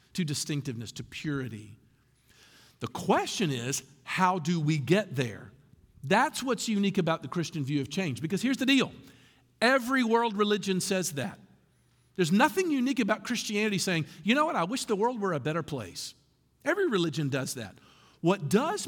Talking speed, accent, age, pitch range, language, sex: 170 wpm, American, 50-69, 140-225 Hz, English, male